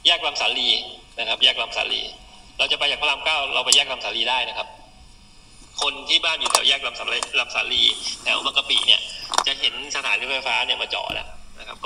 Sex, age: male, 20-39